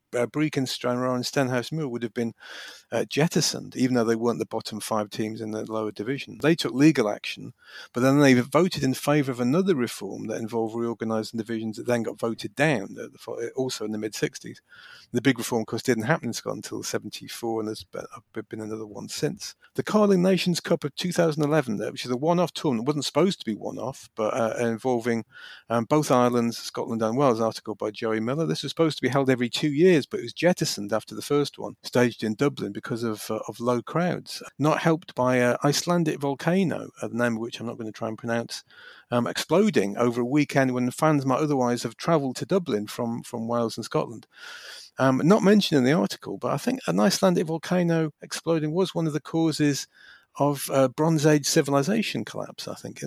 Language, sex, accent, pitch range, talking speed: English, male, British, 115-155 Hz, 210 wpm